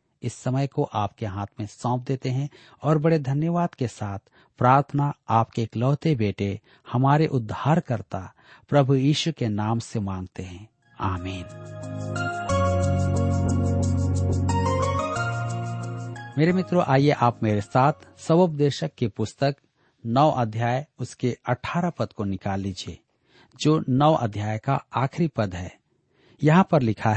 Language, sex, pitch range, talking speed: Hindi, male, 105-145 Hz, 120 wpm